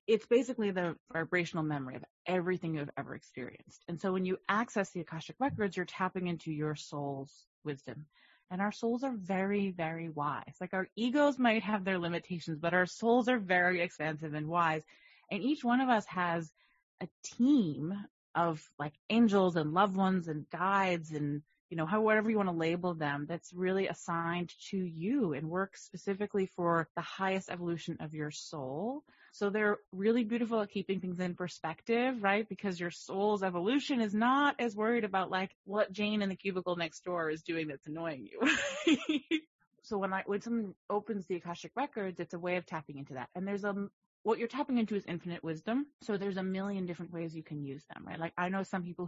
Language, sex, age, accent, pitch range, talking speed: English, female, 30-49, American, 165-210 Hz, 195 wpm